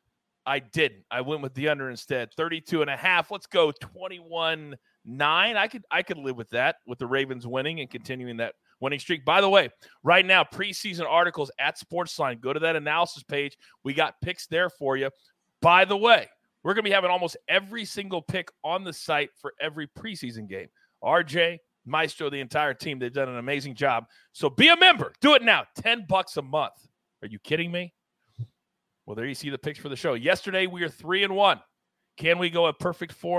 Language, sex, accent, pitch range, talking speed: English, male, American, 150-200 Hz, 205 wpm